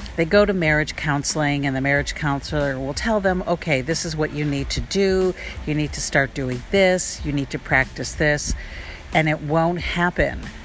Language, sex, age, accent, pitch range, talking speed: English, female, 60-79, American, 135-170 Hz, 195 wpm